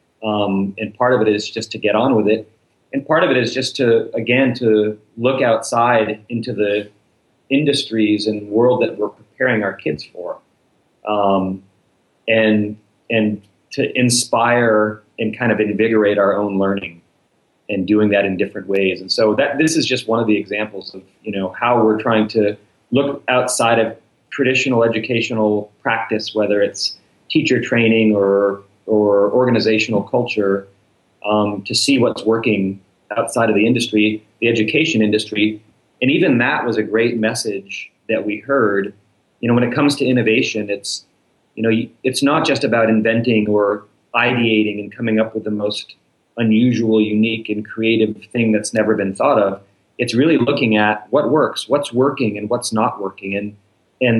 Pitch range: 105-120 Hz